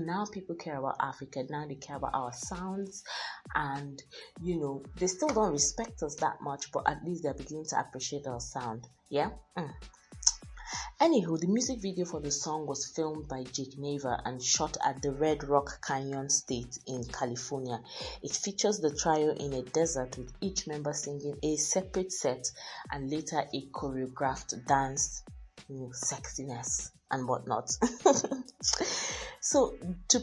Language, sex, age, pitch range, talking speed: English, female, 30-49, 125-155 Hz, 155 wpm